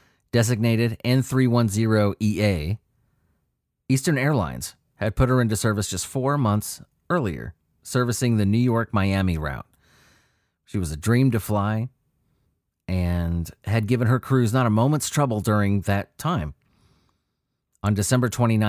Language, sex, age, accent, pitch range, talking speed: English, male, 30-49, American, 95-120 Hz, 125 wpm